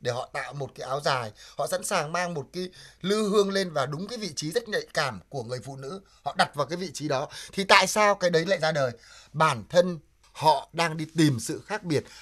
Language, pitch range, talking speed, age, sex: Vietnamese, 135-195 Hz, 255 wpm, 20-39, male